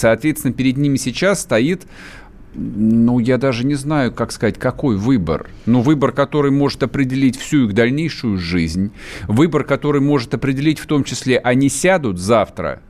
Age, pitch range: 40-59, 110-140 Hz